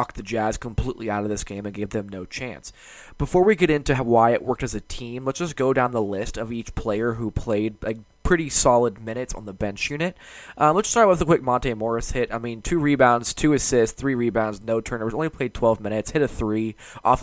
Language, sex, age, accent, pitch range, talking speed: English, male, 20-39, American, 110-145 Hz, 235 wpm